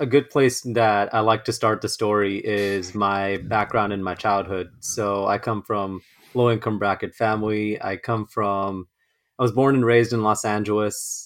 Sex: male